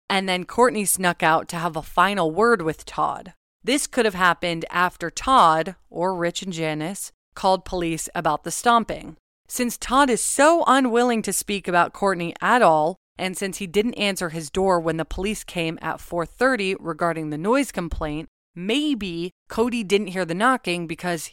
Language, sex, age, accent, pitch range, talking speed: English, female, 30-49, American, 165-205 Hz, 175 wpm